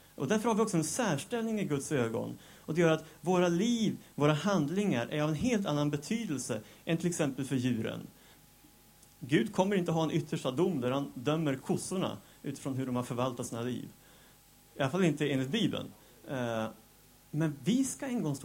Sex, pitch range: male, 130-185 Hz